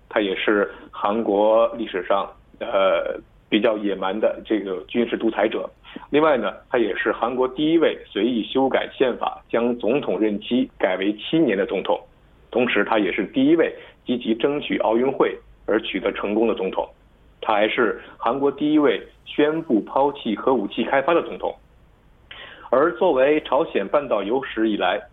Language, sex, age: Korean, male, 50-69